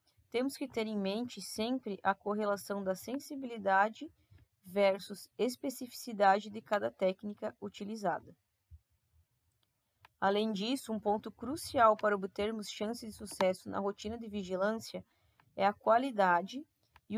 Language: Portuguese